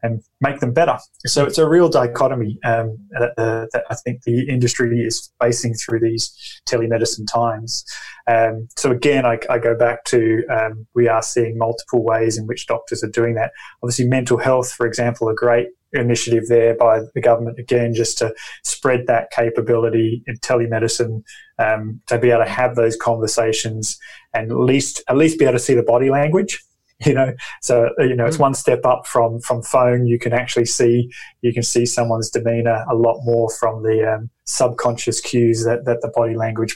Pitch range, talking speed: 115-125 Hz, 185 wpm